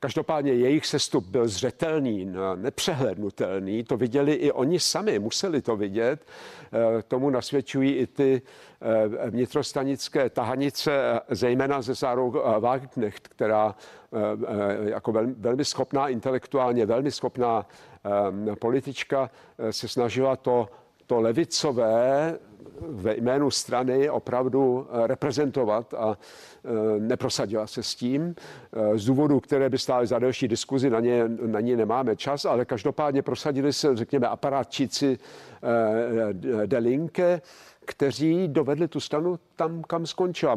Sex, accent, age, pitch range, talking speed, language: male, native, 50-69, 115-145 Hz, 110 wpm, Czech